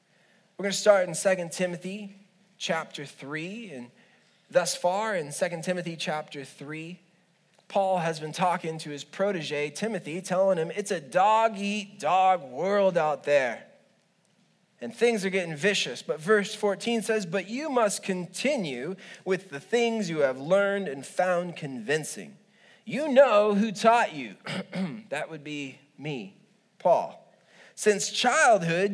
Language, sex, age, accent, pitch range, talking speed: English, male, 20-39, American, 165-210 Hz, 140 wpm